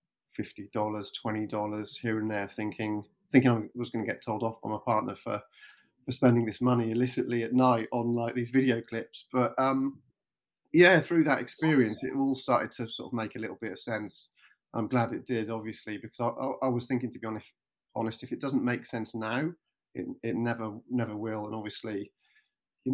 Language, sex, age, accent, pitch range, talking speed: English, male, 30-49, British, 110-125 Hz, 195 wpm